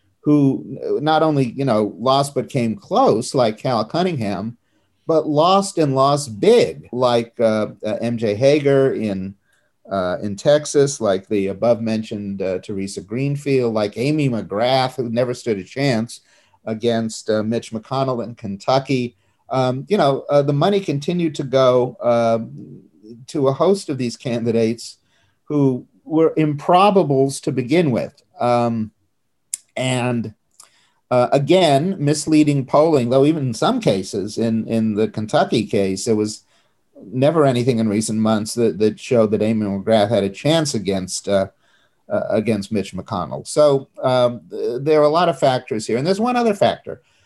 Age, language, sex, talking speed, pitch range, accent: 50-69, English, male, 155 wpm, 110-145 Hz, American